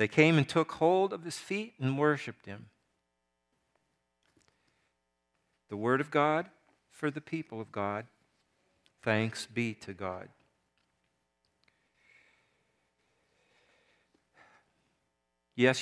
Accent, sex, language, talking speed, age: American, male, English, 95 wpm, 50-69